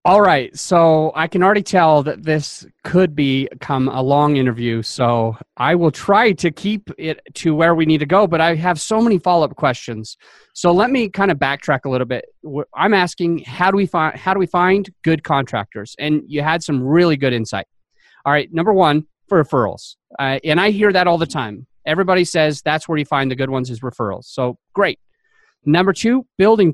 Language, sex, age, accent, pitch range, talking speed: English, male, 30-49, American, 135-180 Hz, 205 wpm